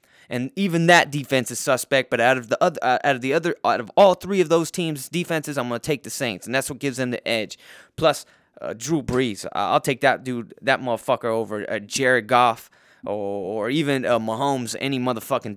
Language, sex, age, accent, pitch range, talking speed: English, male, 20-39, American, 120-150 Hz, 225 wpm